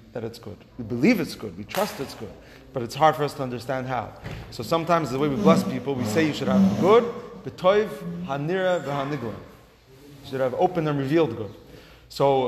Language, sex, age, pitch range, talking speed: English, male, 30-49, 130-185 Hz, 205 wpm